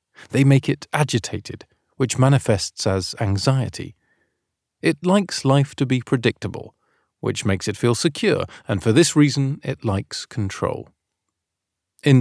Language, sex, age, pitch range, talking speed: English, male, 40-59, 105-140 Hz, 135 wpm